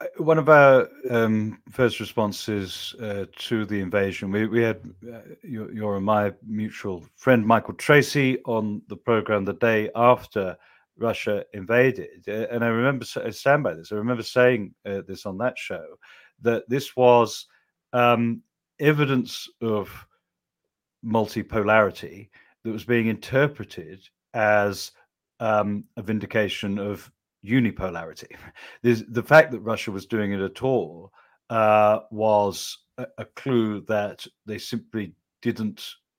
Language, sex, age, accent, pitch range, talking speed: English, male, 40-59, British, 100-115 Hz, 135 wpm